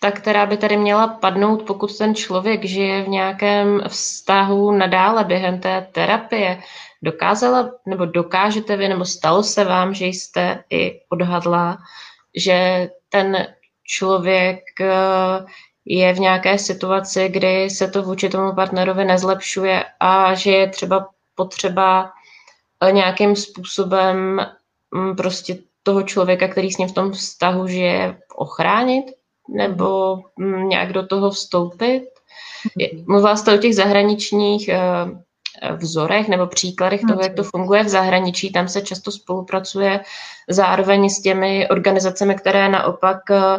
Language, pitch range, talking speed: Czech, 185-200 Hz, 125 wpm